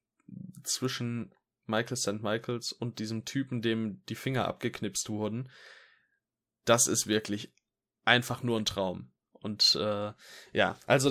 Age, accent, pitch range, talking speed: 10-29, German, 105-135 Hz, 125 wpm